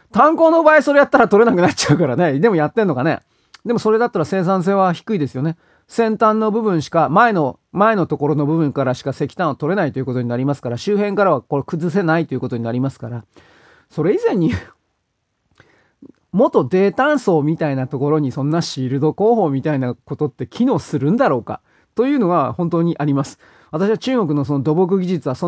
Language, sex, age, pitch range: Japanese, male, 40-59, 140-195 Hz